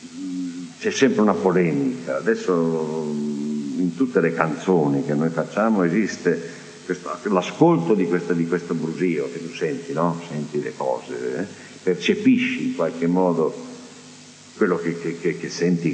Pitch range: 80-135 Hz